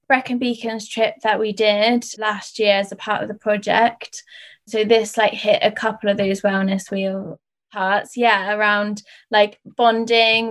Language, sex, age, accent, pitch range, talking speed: English, female, 10-29, British, 205-225 Hz, 165 wpm